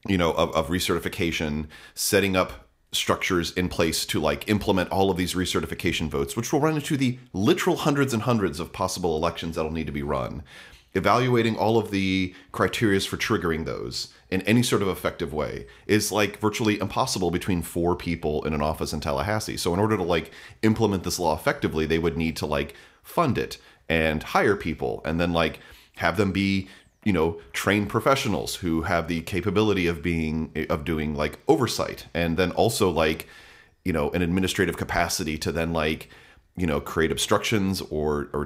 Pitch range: 80-100 Hz